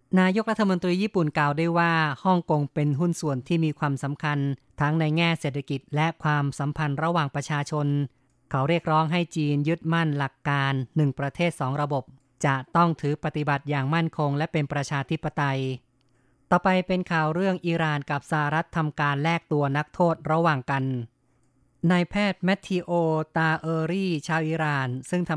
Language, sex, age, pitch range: Thai, female, 20-39, 140-165 Hz